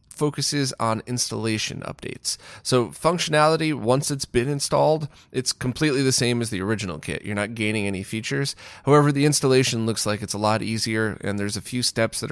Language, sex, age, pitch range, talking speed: English, male, 30-49, 105-130 Hz, 185 wpm